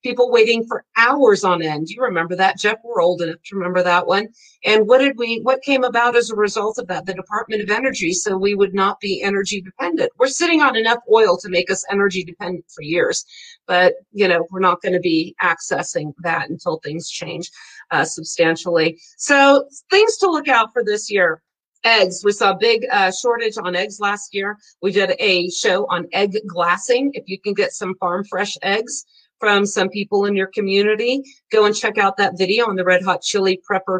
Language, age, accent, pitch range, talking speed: English, 40-59, American, 185-240 Hz, 210 wpm